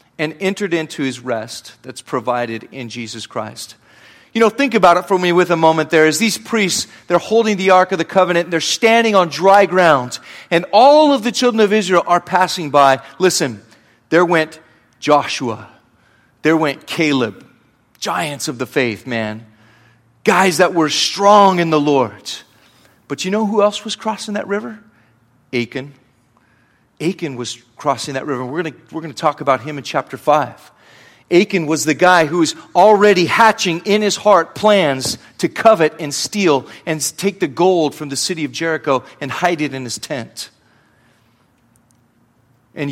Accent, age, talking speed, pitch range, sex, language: American, 40-59, 175 wpm, 130-180 Hz, male, English